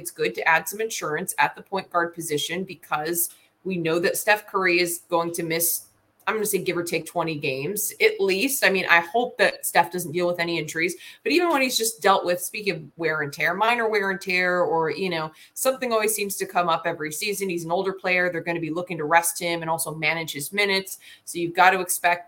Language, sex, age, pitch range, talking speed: English, female, 20-39, 165-195 Hz, 250 wpm